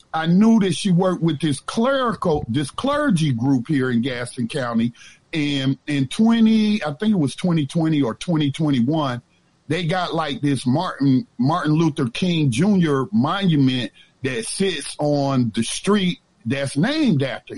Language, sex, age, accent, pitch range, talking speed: English, male, 50-69, American, 130-180 Hz, 145 wpm